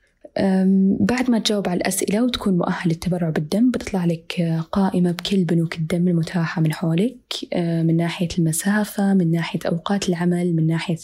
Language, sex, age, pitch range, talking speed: Arabic, female, 20-39, 170-200 Hz, 145 wpm